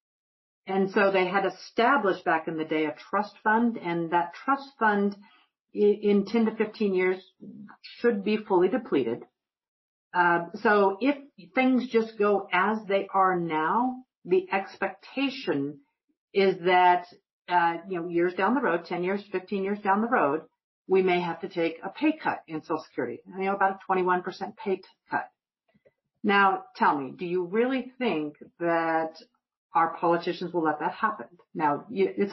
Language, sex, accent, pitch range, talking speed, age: English, female, American, 170-220 Hz, 165 wpm, 50-69